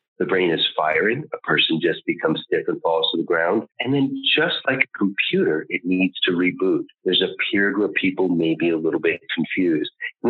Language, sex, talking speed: English, male, 210 wpm